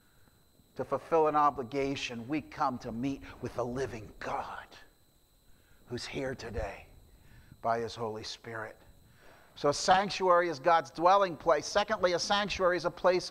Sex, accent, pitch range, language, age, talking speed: male, American, 145-195 Hz, English, 50-69, 145 wpm